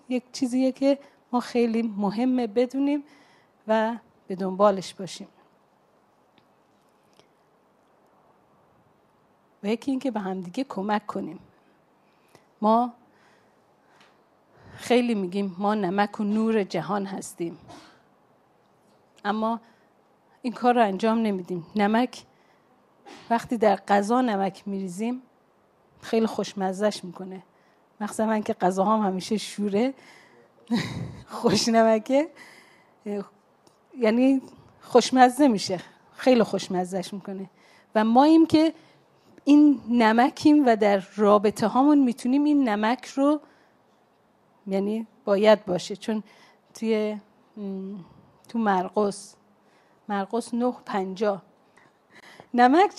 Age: 40-59